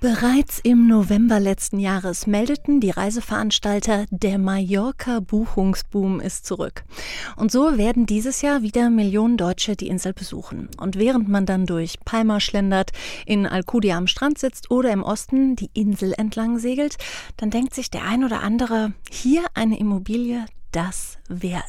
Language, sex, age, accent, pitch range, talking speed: German, female, 30-49, German, 195-245 Hz, 150 wpm